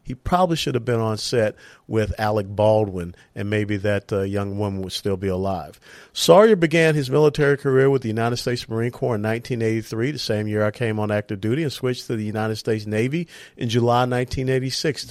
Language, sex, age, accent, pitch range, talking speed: English, male, 50-69, American, 110-140 Hz, 205 wpm